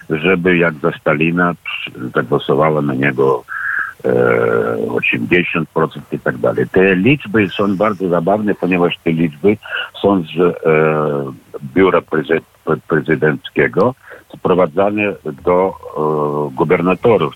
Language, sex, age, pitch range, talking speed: Polish, male, 50-69, 75-95 Hz, 90 wpm